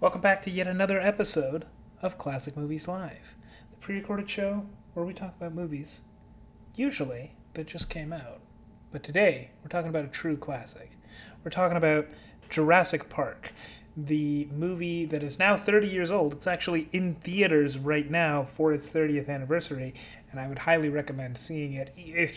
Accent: American